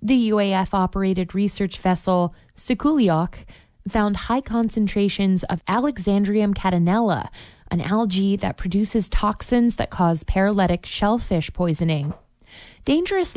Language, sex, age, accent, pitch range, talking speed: English, female, 20-39, American, 180-225 Hz, 100 wpm